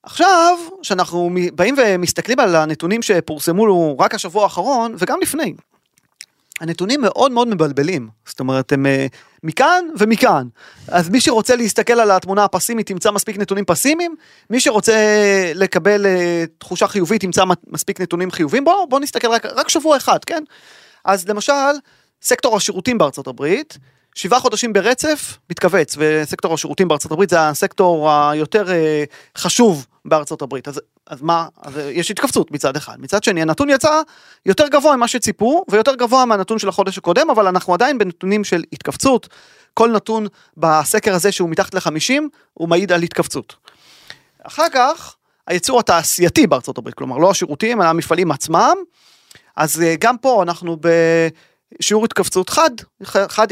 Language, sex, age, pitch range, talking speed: Hebrew, male, 30-49, 165-235 Hz, 140 wpm